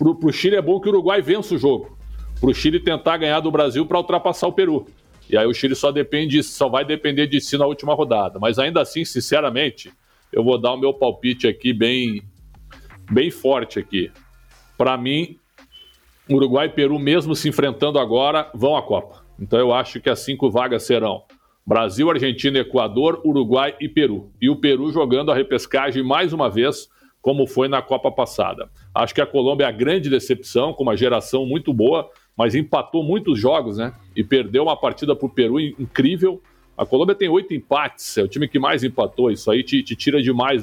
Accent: Brazilian